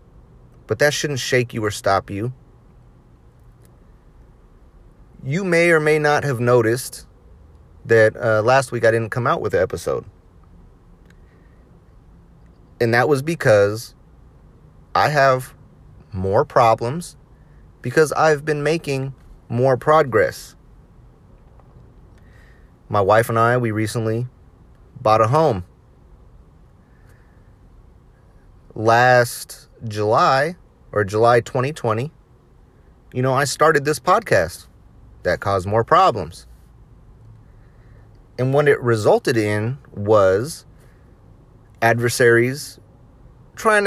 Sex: male